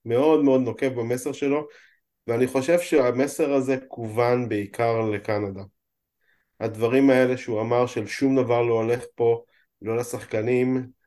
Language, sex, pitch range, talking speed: Hebrew, male, 115-140 Hz, 130 wpm